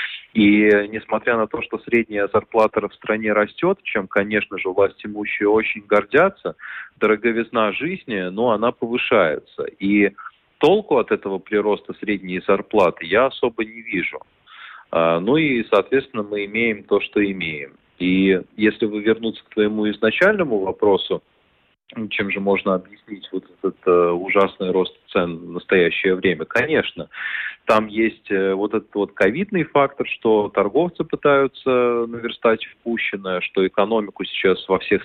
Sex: male